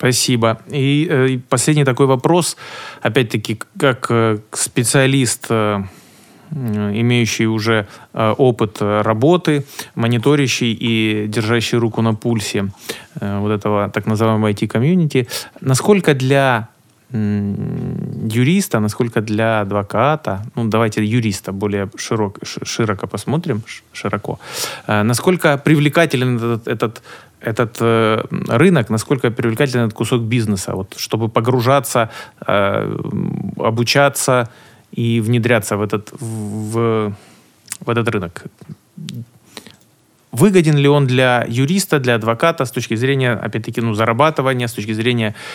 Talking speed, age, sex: 100 wpm, 20-39, male